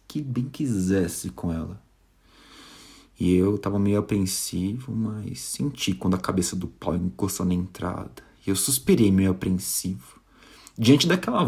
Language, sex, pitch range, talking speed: Portuguese, male, 95-120 Hz, 140 wpm